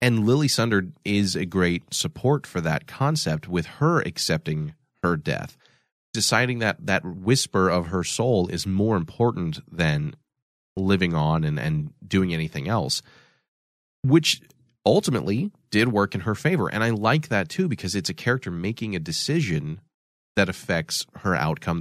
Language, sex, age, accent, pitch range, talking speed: English, male, 30-49, American, 90-125 Hz, 155 wpm